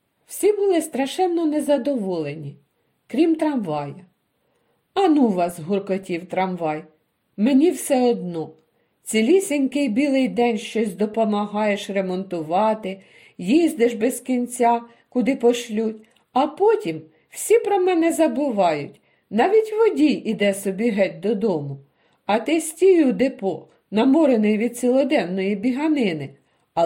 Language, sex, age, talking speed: Ukrainian, female, 50-69, 100 wpm